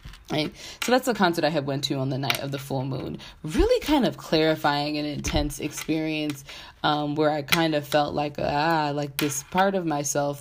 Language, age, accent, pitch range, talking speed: English, 20-39, American, 140-180 Hz, 210 wpm